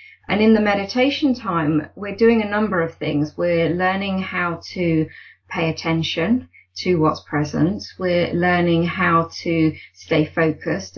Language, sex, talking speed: English, female, 140 wpm